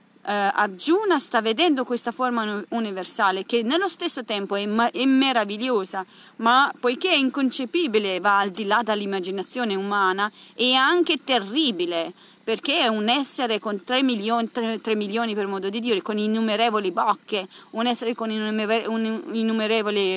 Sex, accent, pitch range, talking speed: female, native, 200-260 Hz, 150 wpm